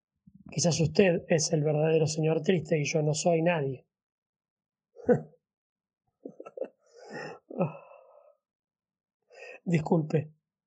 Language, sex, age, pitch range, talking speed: Spanish, male, 20-39, 160-200 Hz, 75 wpm